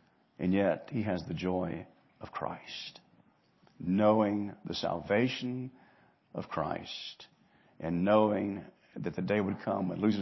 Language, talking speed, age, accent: English, 130 wpm, 50-69, American